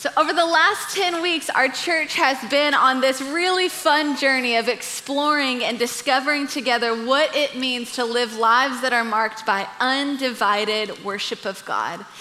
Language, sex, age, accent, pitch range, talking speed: English, female, 20-39, American, 230-285 Hz, 165 wpm